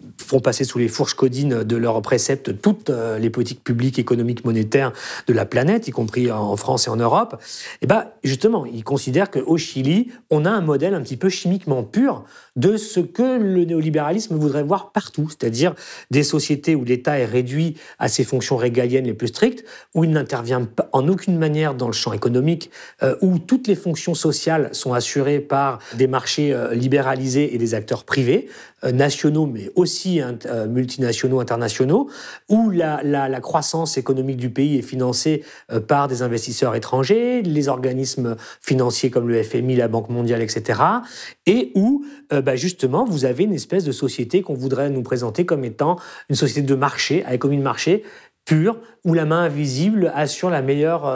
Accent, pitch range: French, 125-165 Hz